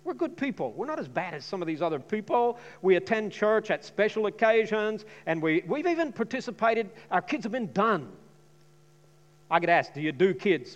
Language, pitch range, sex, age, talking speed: English, 155-210 Hz, male, 50-69, 195 wpm